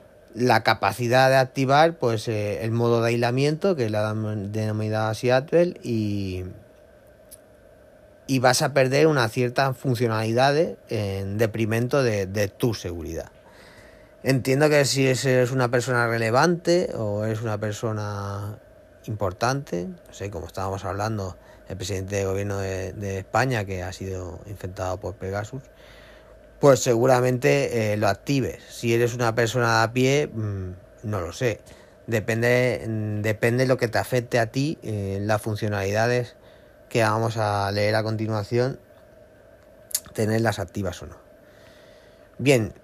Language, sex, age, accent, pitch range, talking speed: Spanish, male, 30-49, Spanish, 100-125 Hz, 140 wpm